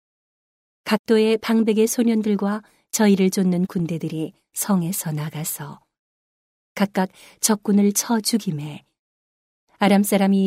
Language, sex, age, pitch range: Korean, female, 40-59, 185-210 Hz